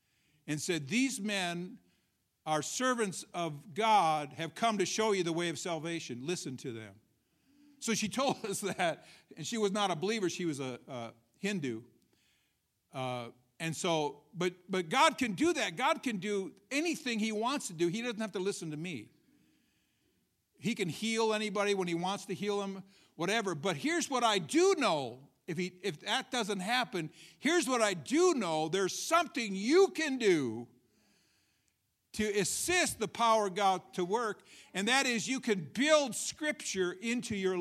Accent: American